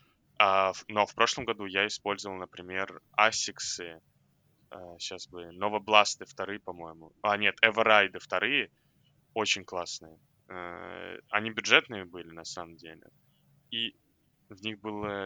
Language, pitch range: Russian, 95-115 Hz